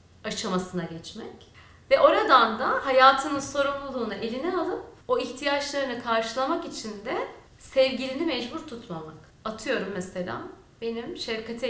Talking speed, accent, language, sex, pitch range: 110 wpm, native, Turkish, female, 205-280 Hz